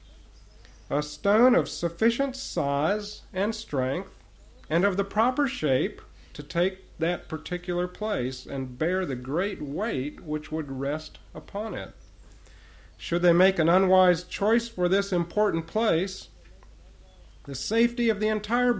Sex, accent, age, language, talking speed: male, American, 50-69, English, 135 wpm